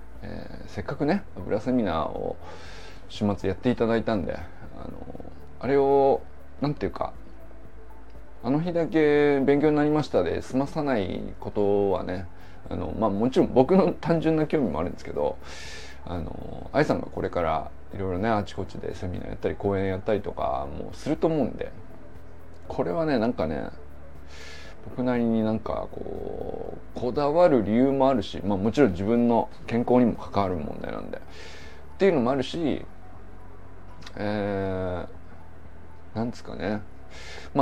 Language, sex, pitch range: Japanese, male, 85-140 Hz